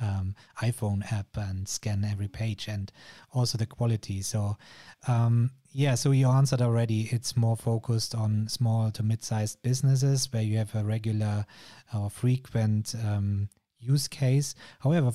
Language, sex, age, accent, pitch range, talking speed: English, male, 30-49, German, 110-135 Hz, 145 wpm